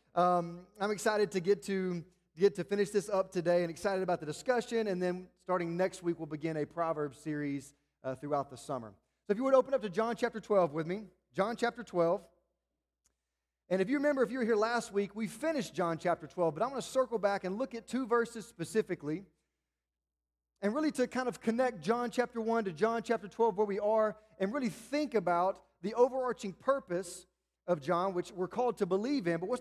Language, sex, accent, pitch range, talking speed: English, male, American, 165-220 Hz, 215 wpm